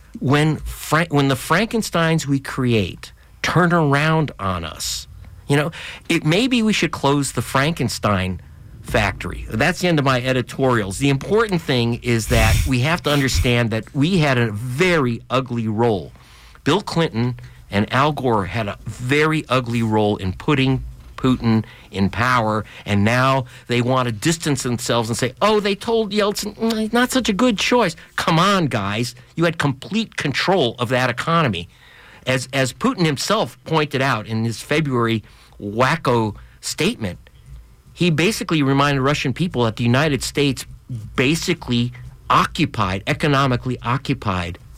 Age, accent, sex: 50-69, American, male